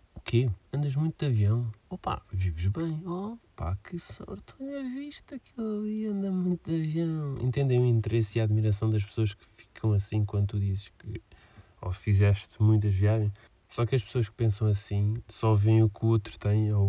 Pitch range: 100-120 Hz